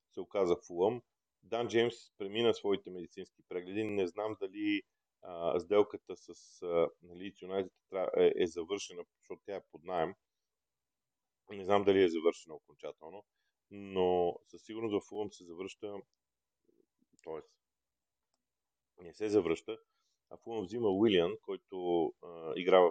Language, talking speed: Bulgarian, 125 wpm